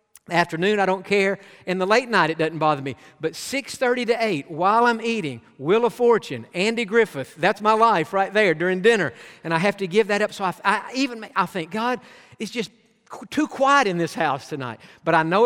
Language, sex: English, male